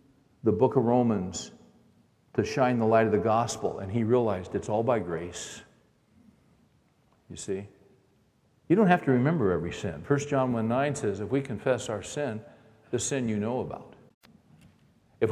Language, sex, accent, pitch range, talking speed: English, male, American, 115-150 Hz, 170 wpm